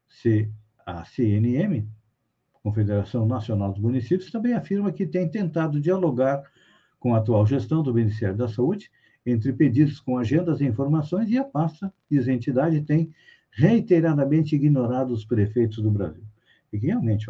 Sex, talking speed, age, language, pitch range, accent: male, 140 wpm, 60-79, Portuguese, 110-160 Hz, Brazilian